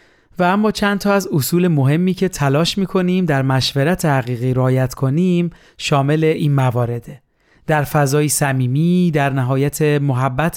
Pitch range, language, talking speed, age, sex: 135-170 Hz, Persian, 140 wpm, 40-59, male